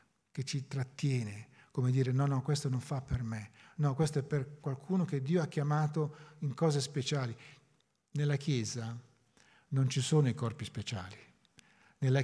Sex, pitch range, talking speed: male, 130-175 Hz, 160 wpm